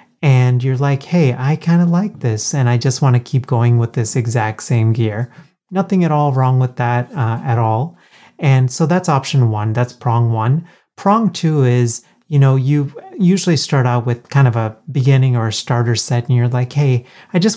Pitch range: 115-140 Hz